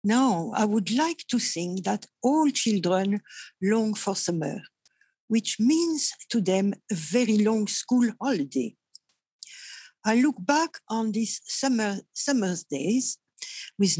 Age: 60-79